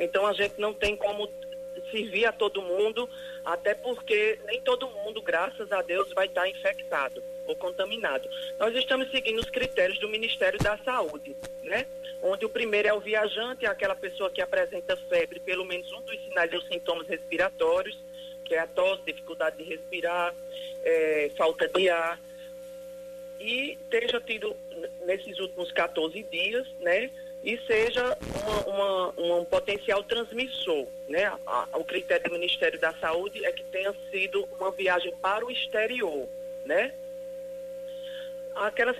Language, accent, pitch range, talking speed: Portuguese, Brazilian, 180-270 Hz, 150 wpm